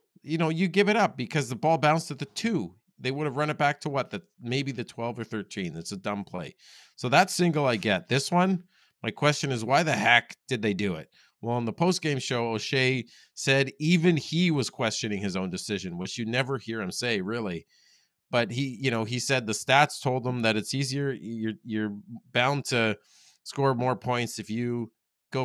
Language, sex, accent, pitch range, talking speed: English, male, American, 110-145 Hz, 215 wpm